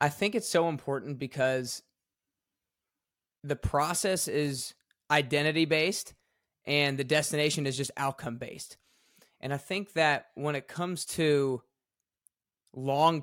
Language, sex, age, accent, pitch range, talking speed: English, male, 20-39, American, 135-165 Hz, 125 wpm